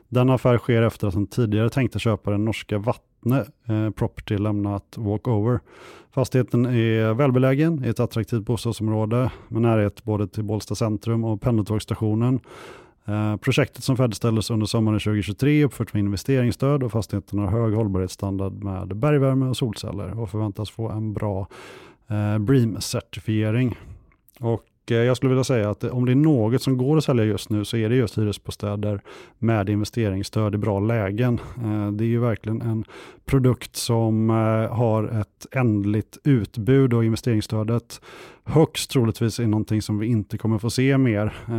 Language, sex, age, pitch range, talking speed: Swedish, male, 30-49, 105-125 Hz, 155 wpm